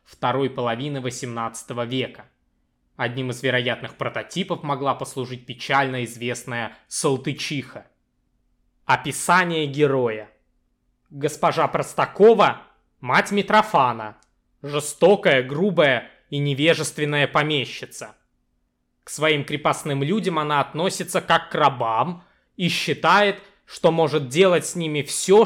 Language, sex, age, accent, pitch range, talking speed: Russian, male, 20-39, native, 130-165 Hz, 95 wpm